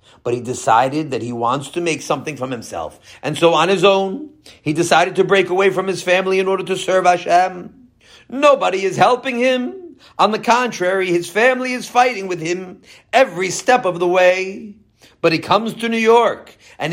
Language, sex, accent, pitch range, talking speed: English, male, American, 135-195 Hz, 190 wpm